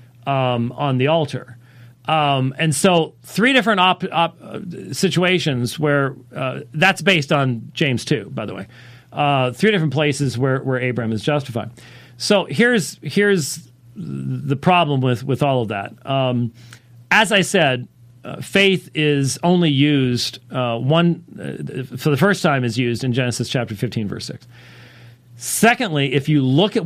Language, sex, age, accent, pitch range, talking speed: English, male, 40-59, American, 125-160 Hz, 155 wpm